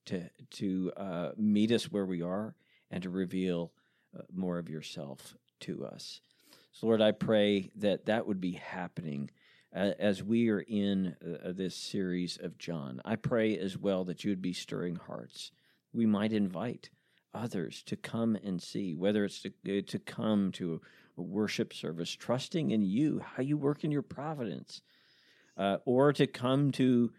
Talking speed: 165 wpm